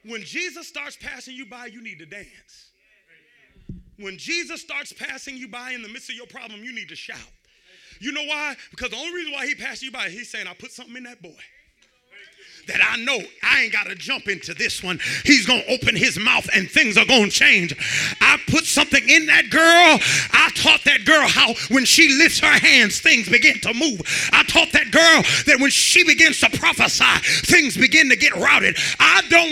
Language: English